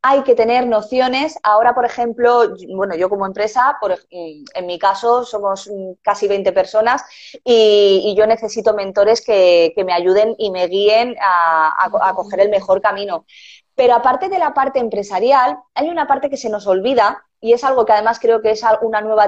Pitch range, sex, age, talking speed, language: 195-245 Hz, female, 20-39, 185 wpm, Spanish